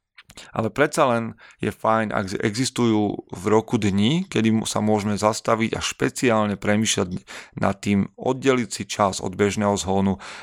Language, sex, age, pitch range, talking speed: Slovak, male, 30-49, 100-115 Hz, 145 wpm